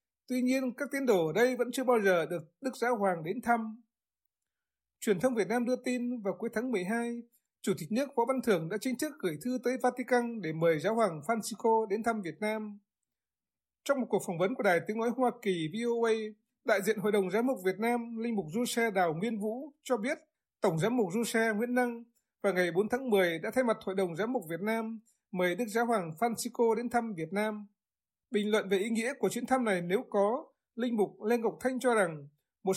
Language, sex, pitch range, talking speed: Vietnamese, male, 195-245 Hz, 230 wpm